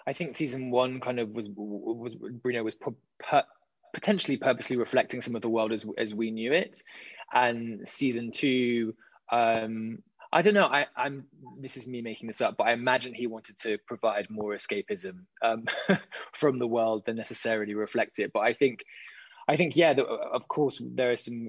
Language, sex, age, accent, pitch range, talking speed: German, male, 20-39, British, 110-135 Hz, 190 wpm